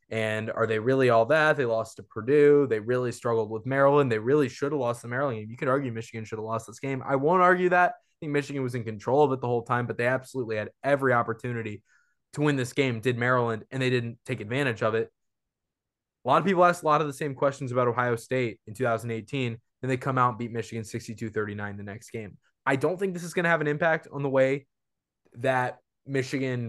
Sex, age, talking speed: male, 20-39, 240 wpm